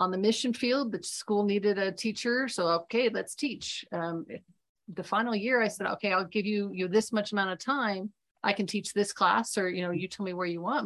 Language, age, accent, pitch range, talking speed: English, 40-59, American, 185-235 Hz, 245 wpm